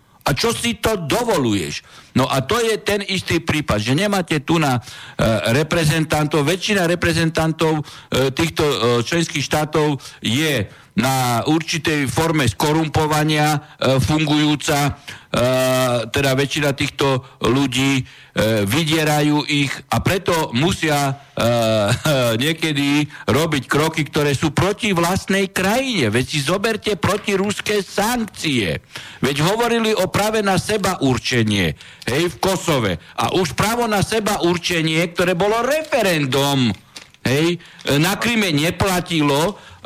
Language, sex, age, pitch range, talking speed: Slovak, male, 60-79, 140-195 Hz, 125 wpm